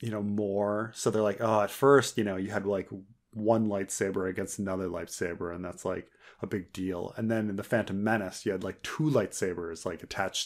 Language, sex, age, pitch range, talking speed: English, male, 30-49, 100-140 Hz, 220 wpm